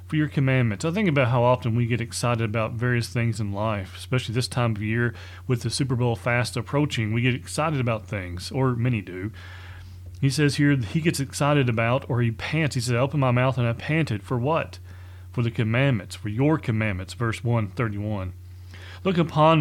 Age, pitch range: 40-59, 110-140 Hz